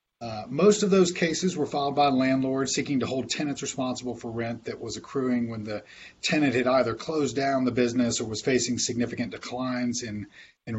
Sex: male